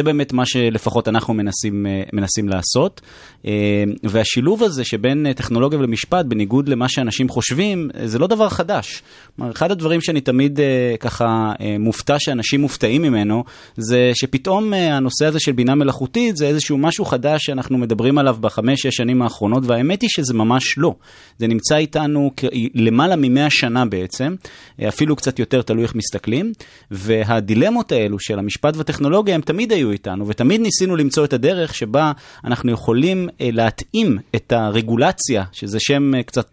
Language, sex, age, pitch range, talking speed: Hebrew, male, 30-49, 115-150 Hz, 150 wpm